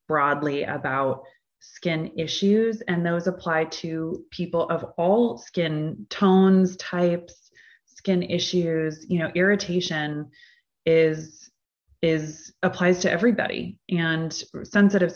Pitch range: 160-190 Hz